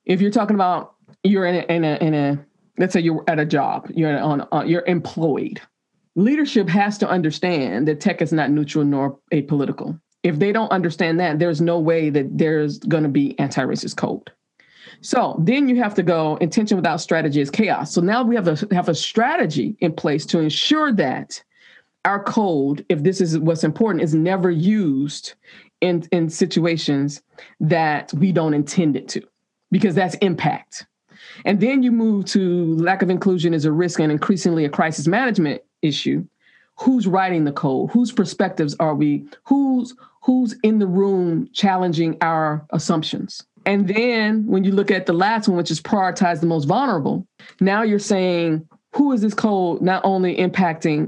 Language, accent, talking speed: English, American, 180 wpm